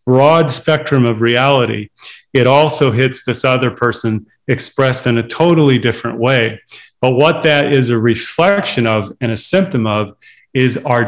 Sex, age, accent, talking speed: male, 40-59, American, 155 wpm